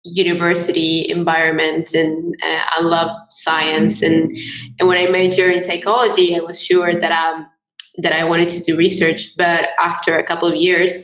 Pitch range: 165-185 Hz